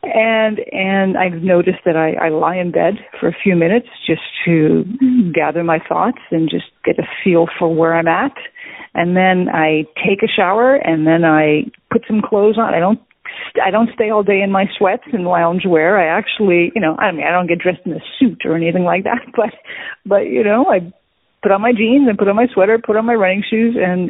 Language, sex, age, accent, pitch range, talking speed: English, female, 40-59, American, 170-220 Hz, 225 wpm